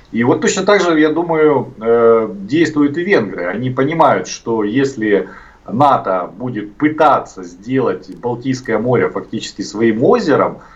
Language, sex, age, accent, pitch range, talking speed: Russian, male, 40-59, native, 105-140 Hz, 130 wpm